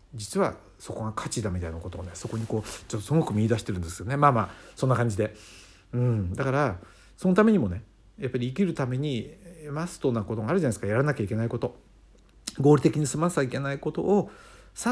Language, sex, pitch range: Japanese, male, 100-145 Hz